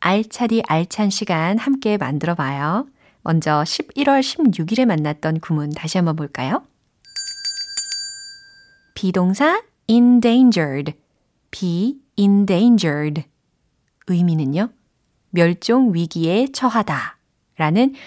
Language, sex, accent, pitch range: Korean, female, native, 160-240 Hz